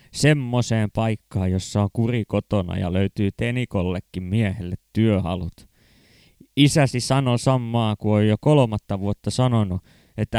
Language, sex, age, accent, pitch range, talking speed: Finnish, male, 20-39, native, 100-125 Hz, 120 wpm